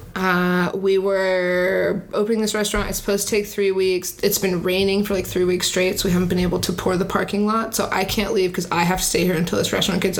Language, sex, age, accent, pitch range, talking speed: English, female, 20-39, American, 185-210 Hz, 260 wpm